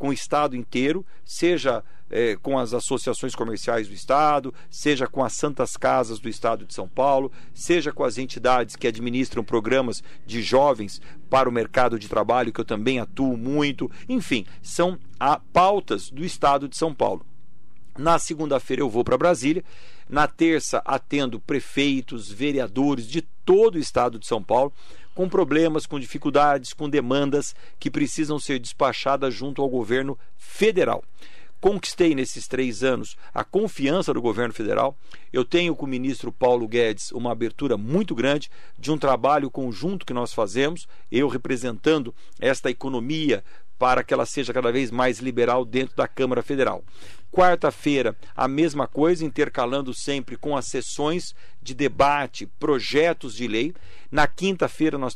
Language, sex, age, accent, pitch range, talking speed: Portuguese, male, 50-69, Brazilian, 125-150 Hz, 150 wpm